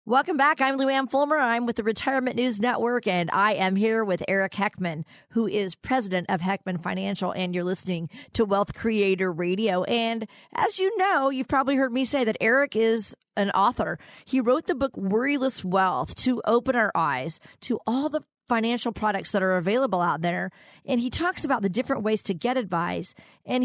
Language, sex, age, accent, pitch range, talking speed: English, female, 40-59, American, 185-255 Hz, 195 wpm